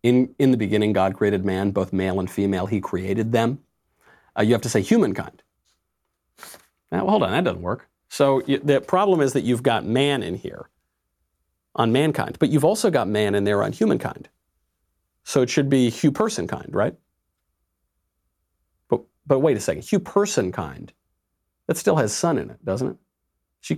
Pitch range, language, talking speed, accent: 95-140 Hz, English, 185 wpm, American